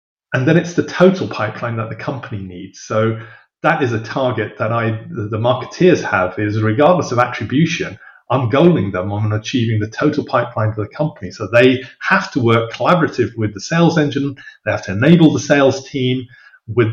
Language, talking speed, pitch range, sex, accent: English, 190 wpm, 105-130 Hz, male, British